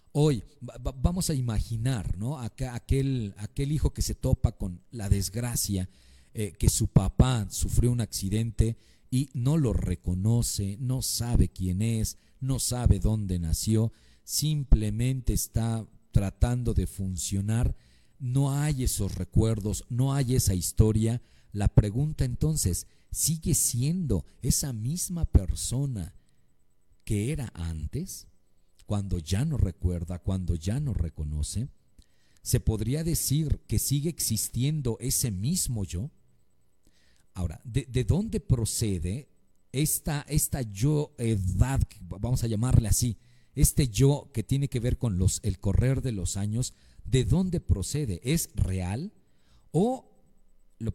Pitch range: 95-135 Hz